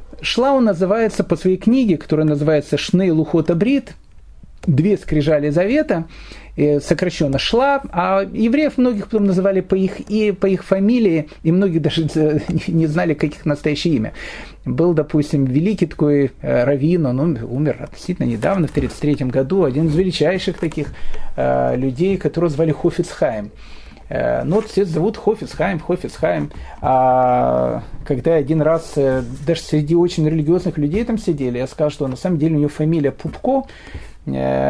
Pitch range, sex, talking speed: 150-195 Hz, male, 135 wpm